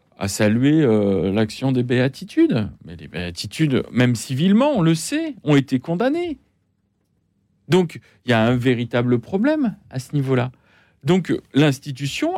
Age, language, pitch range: 40-59, French, 110-165 Hz